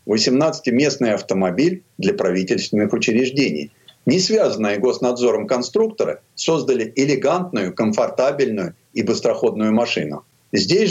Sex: male